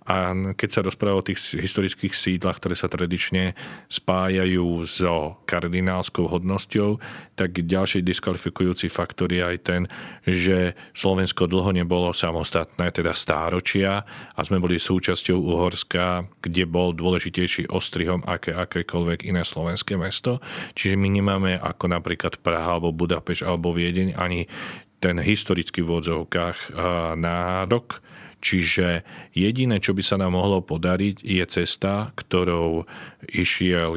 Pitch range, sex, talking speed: 85-95 Hz, male, 125 wpm